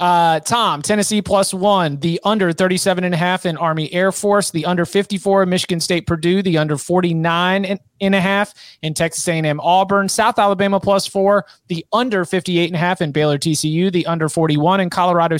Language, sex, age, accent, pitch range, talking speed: English, male, 30-49, American, 165-200 Hz, 195 wpm